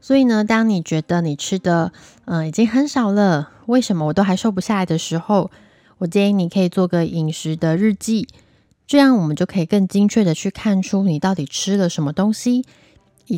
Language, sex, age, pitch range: Chinese, female, 20-39, 165-215 Hz